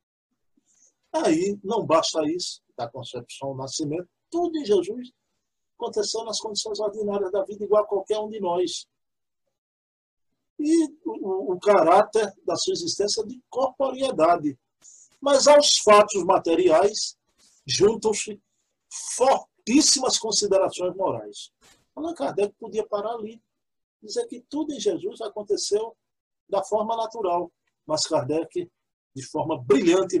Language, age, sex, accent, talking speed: Portuguese, 50-69, male, Brazilian, 120 wpm